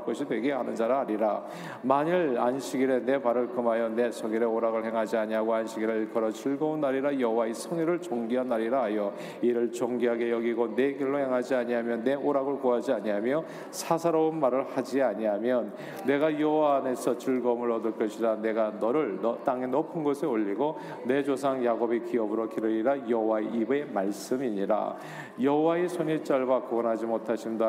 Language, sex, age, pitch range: Korean, male, 40-59, 115-140 Hz